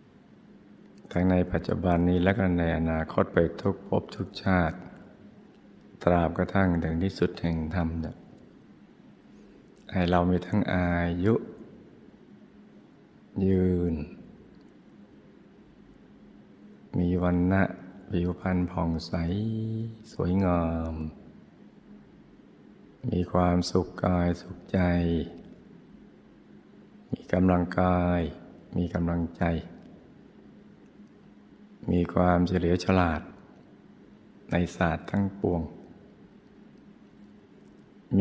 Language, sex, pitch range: Thai, male, 85-95 Hz